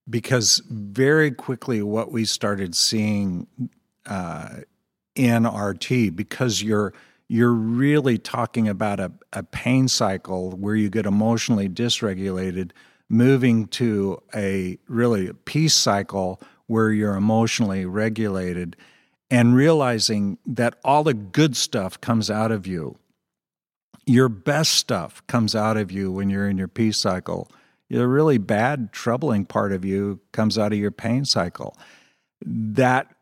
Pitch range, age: 100-120 Hz, 50-69